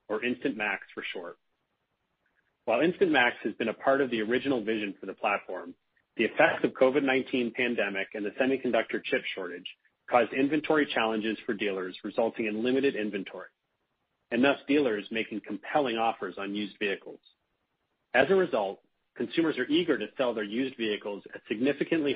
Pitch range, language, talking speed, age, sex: 105-135 Hz, English, 160 wpm, 40-59, male